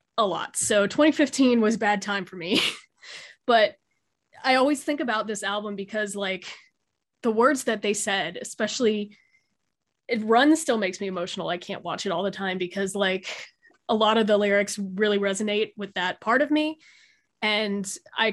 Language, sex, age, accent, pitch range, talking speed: English, female, 20-39, American, 195-225 Hz, 175 wpm